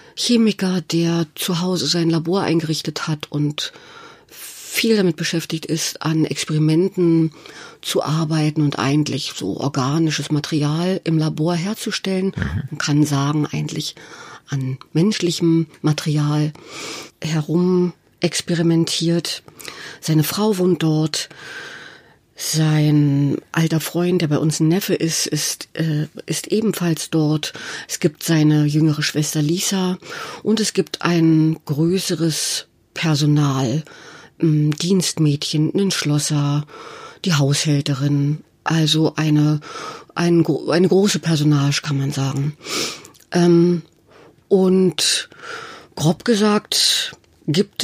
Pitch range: 150-180 Hz